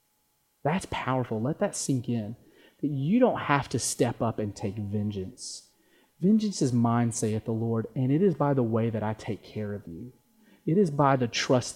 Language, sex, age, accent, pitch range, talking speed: English, male, 30-49, American, 115-155 Hz, 200 wpm